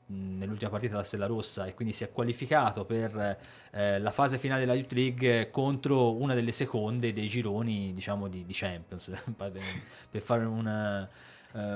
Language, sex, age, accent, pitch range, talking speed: Italian, male, 20-39, native, 105-130 Hz, 160 wpm